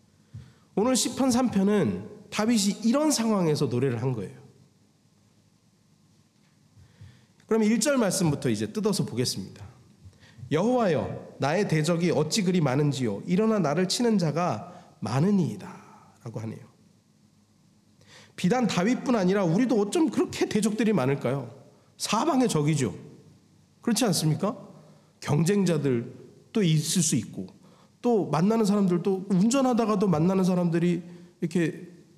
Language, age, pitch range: Korean, 40-59, 150-220 Hz